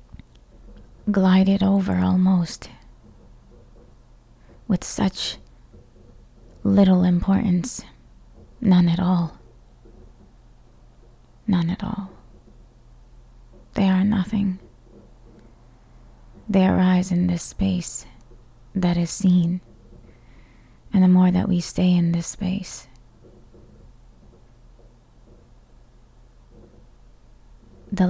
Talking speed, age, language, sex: 75 wpm, 20-39, English, female